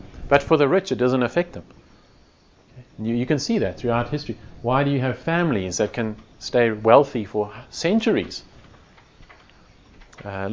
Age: 40-59